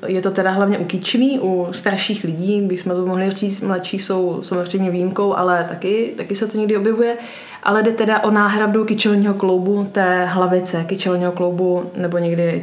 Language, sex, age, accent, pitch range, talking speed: Czech, female, 20-39, native, 180-210 Hz, 180 wpm